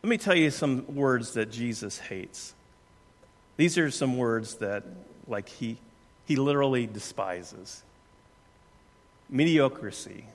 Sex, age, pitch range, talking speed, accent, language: male, 50-69, 110-140 Hz, 115 wpm, American, English